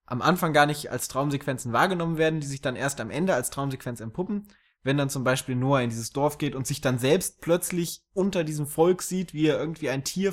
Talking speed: 230 wpm